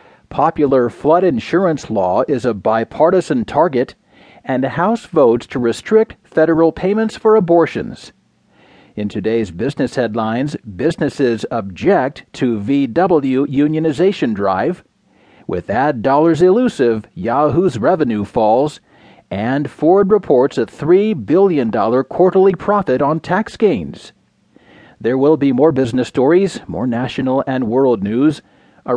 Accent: American